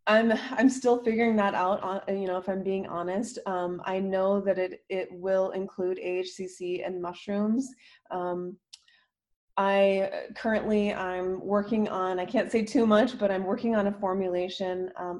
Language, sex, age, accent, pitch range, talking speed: English, female, 20-39, American, 180-205 Hz, 160 wpm